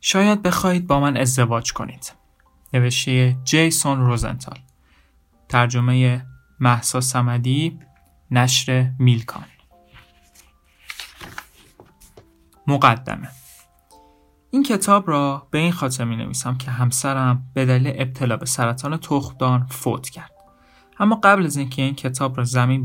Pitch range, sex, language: 120-140 Hz, male, Persian